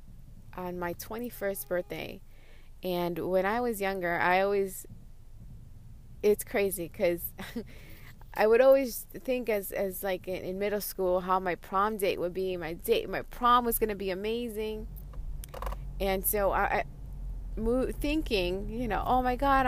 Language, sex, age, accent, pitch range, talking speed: English, female, 20-39, American, 185-240 Hz, 150 wpm